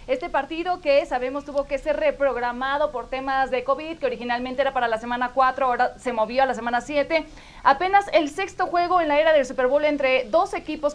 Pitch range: 245-290 Hz